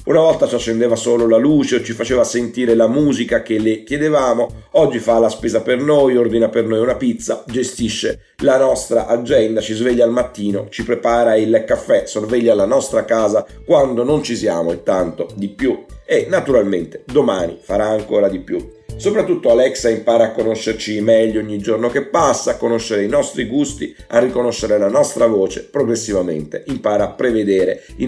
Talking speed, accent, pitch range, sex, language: 175 wpm, native, 110-130 Hz, male, Italian